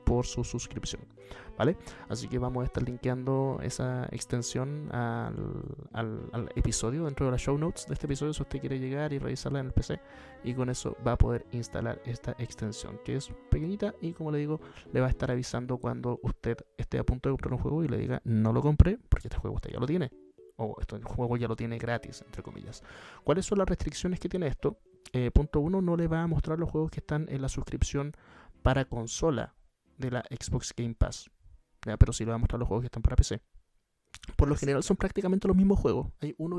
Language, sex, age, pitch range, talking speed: Spanish, male, 30-49, 115-150 Hz, 225 wpm